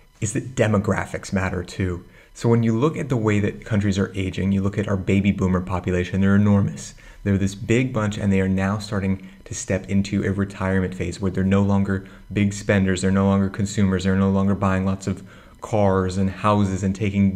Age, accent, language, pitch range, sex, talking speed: 30-49, American, English, 95-100 Hz, male, 210 wpm